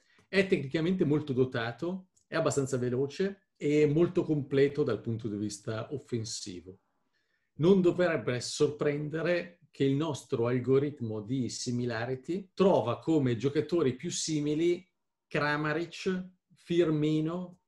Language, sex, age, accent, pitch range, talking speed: Italian, male, 40-59, native, 115-150 Hz, 105 wpm